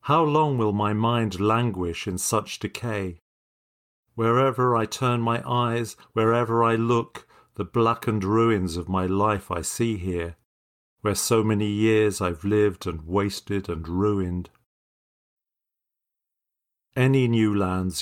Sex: male